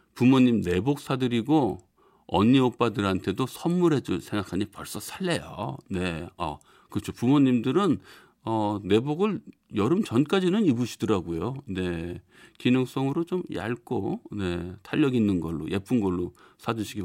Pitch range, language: 100-155 Hz, Korean